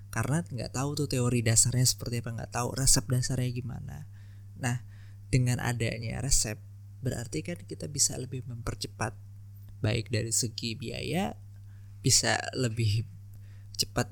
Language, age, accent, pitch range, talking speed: Indonesian, 20-39, native, 105-125 Hz, 130 wpm